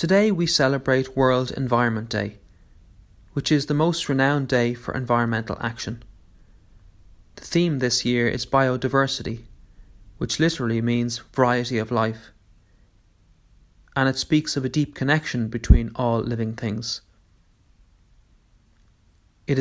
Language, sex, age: English, male, 30-49